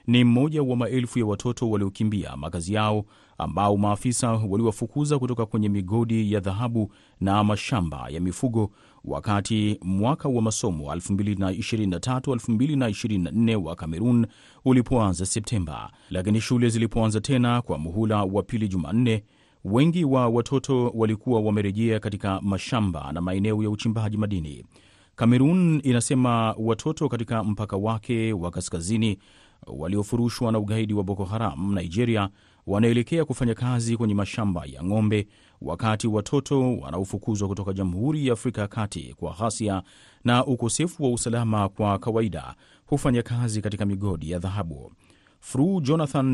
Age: 30-49